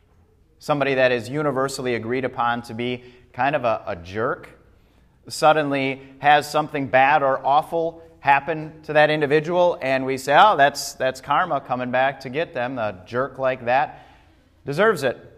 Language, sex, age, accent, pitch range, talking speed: English, male, 30-49, American, 115-155 Hz, 160 wpm